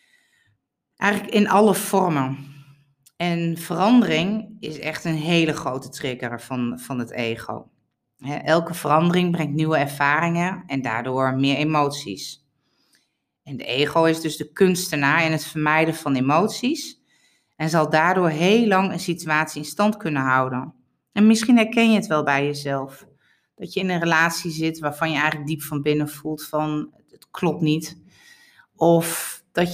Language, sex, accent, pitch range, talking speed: Dutch, female, Dutch, 145-185 Hz, 150 wpm